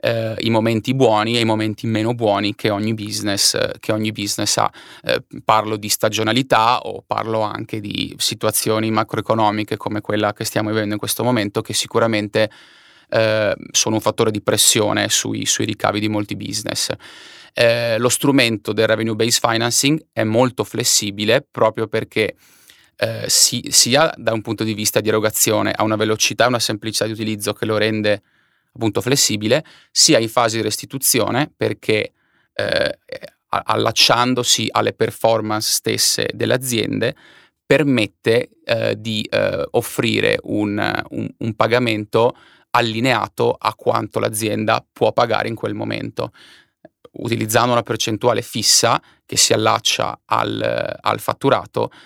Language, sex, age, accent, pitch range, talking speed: Italian, male, 30-49, native, 110-120 Hz, 135 wpm